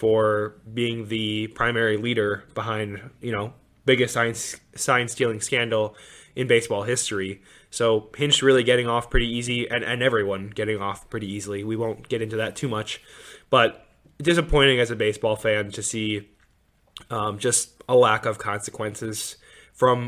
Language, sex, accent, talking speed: English, male, American, 150 wpm